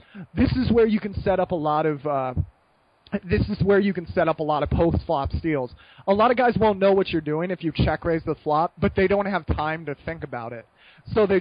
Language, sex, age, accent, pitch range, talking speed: English, male, 20-39, American, 155-200 Hz, 265 wpm